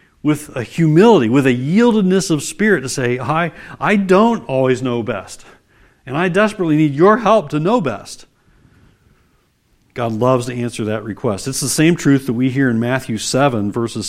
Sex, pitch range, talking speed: male, 120-165 Hz, 180 wpm